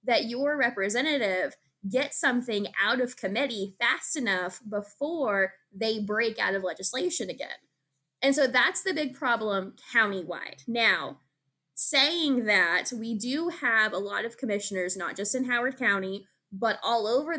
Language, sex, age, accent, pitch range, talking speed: English, female, 10-29, American, 195-245 Hz, 145 wpm